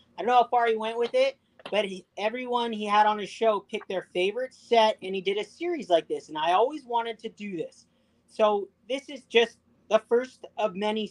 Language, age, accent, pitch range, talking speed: English, 30-49, American, 190-230 Hz, 230 wpm